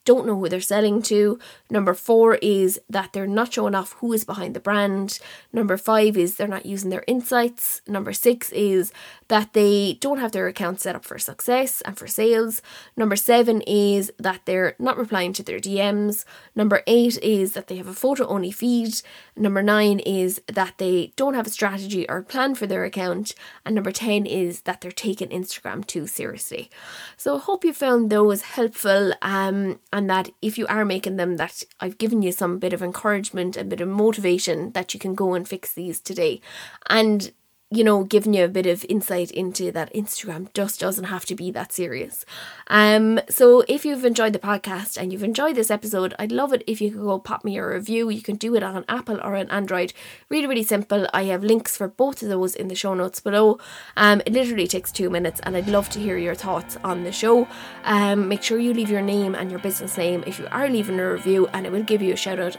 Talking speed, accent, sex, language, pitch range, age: 220 wpm, Irish, female, English, 185-220 Hz, 20-39